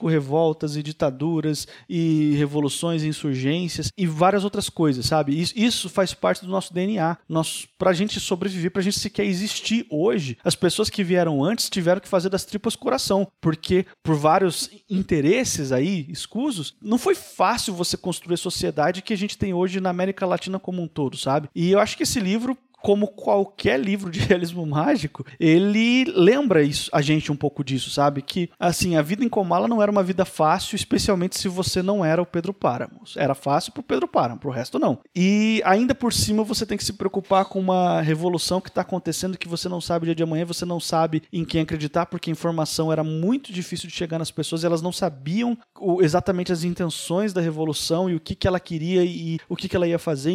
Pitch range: 160-200 Hz